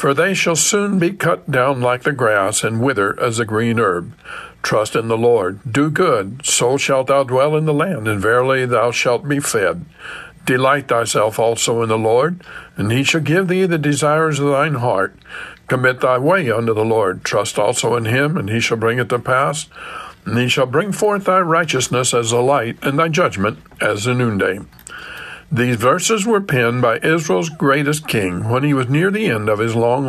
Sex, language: male, English